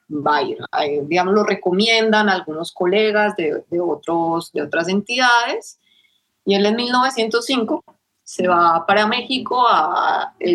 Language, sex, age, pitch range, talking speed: Spanish, female, 30-49, 180-240 Hz, 140 wpm